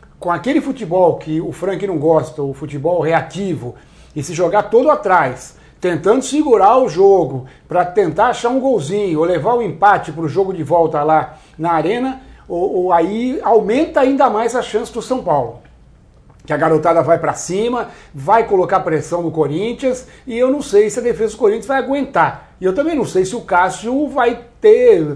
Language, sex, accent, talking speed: Portuguese, male, Brazilian, 185 wpm